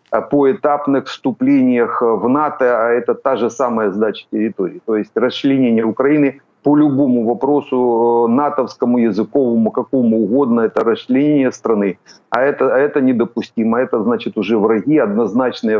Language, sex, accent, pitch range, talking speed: Ukrainian, male, native, 110-135 Hz, 135 wpm